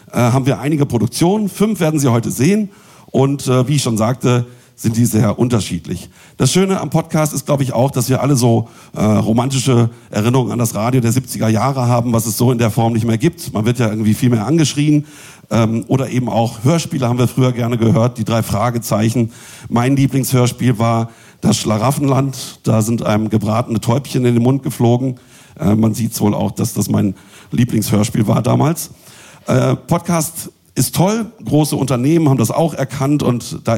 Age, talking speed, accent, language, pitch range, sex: 50-69, 190 wpm, German, German, 115-150 Hz, male